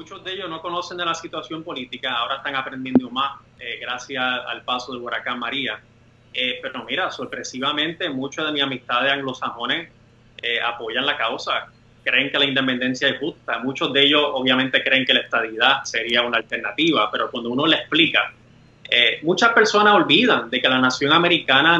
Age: 30-49